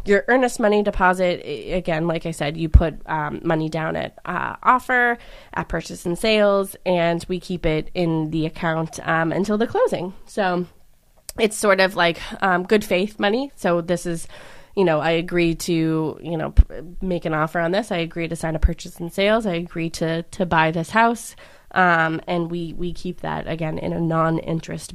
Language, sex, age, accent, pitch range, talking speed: English, female, 20-39, American, 165-200 Hz, 195 wpm